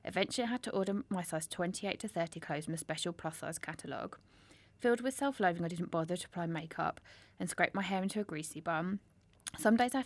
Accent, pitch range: British, 160-210 Hz